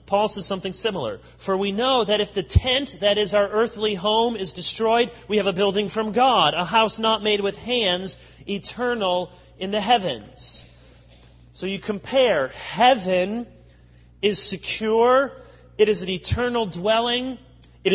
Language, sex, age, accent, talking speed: English, male, 30-49, American, 155 wpm